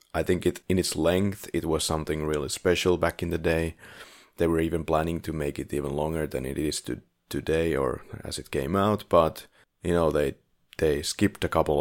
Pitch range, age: 80-100 Hz, 30-49